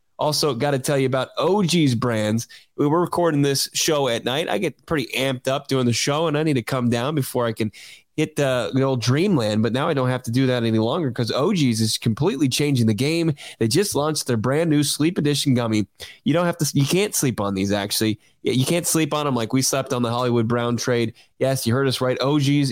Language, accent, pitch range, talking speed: English, American, 120-150 Hz, 245 wpm